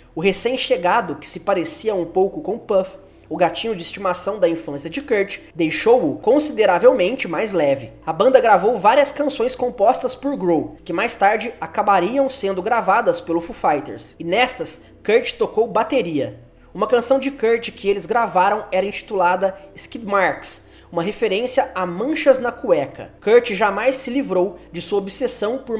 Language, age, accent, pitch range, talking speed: Portuguese, 20-39, Brazilian, 175-255 Hz, 160 wpm